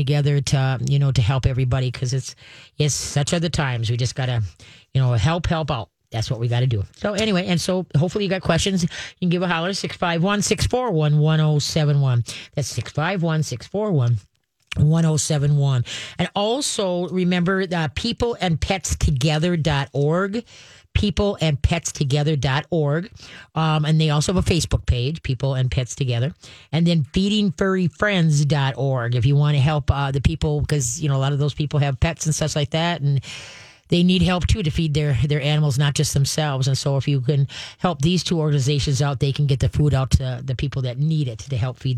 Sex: female